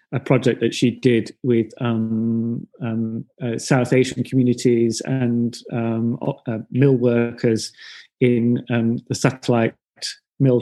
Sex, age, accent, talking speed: male, 30-49, British, 125 wpm